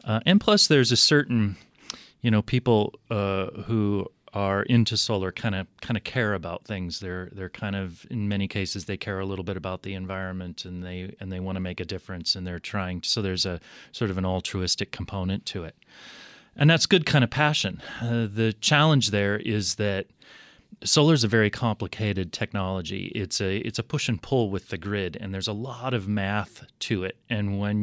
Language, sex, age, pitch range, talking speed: English, male, 30-49, 95-110 Hz, 210 wpm